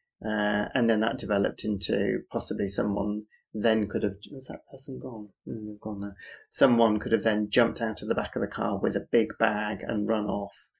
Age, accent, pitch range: 30-49, British, 100-120 Hz